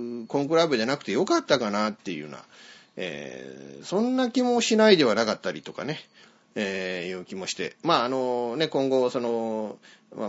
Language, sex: Japanese, male